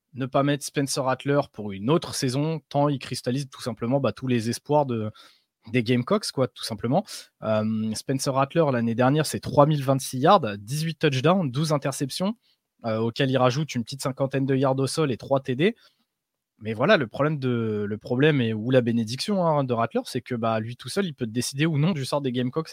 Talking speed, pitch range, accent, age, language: 210 wpm, 120-145 Hz, French, 20-39, French